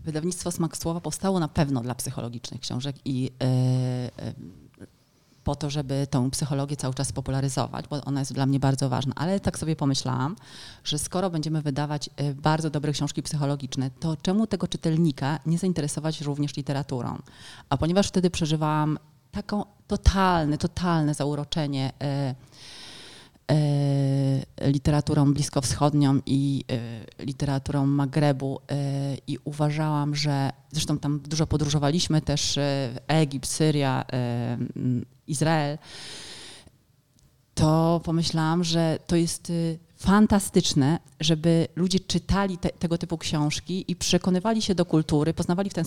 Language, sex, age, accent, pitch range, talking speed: Polish, female, 30-49, native, 140-165 Hz, 120 wpm